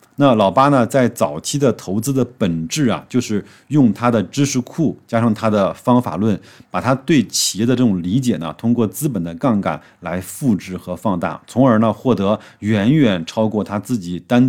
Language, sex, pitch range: Chinese, male, 95-125 Hz